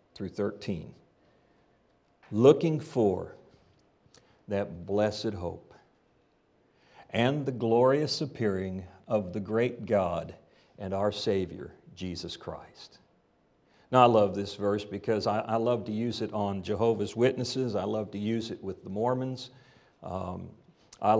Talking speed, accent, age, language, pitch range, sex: 125 wpm, American, 50-69, English, 105-130 Hz, male